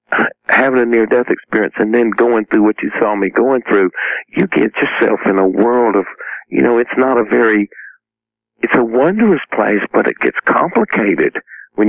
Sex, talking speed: male, 190 wpm